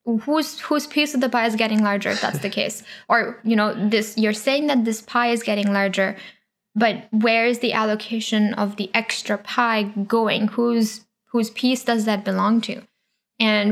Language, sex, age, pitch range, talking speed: English, female, 10-29, 210-235 Hz, 190 wpm